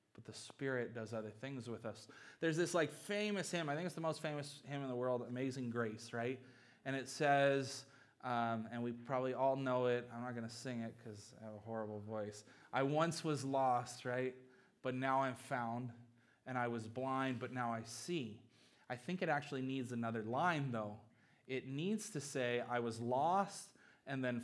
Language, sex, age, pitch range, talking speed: English, male, 20-39, 115-140 Hz, 200 wpm